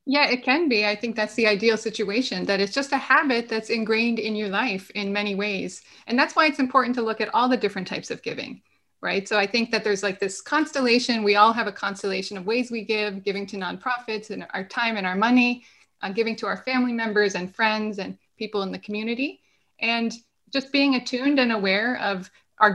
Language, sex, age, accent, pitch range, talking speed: English, female, 20-39, American, 205-255 Hz, 225 wpm